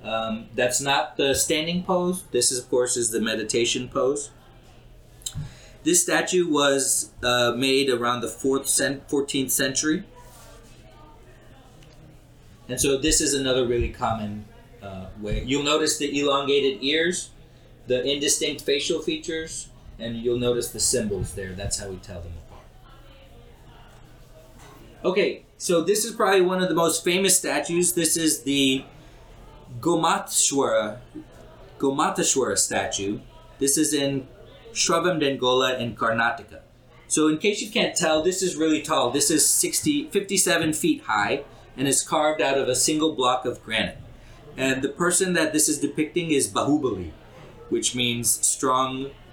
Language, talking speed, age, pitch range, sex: English, 140 wpm, 30-49, 120-160 Hz, male